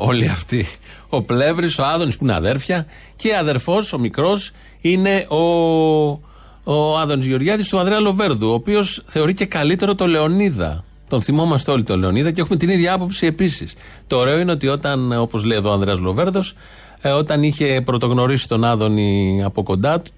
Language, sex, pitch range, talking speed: Greek, male, 120-170 Hz, 170 wpm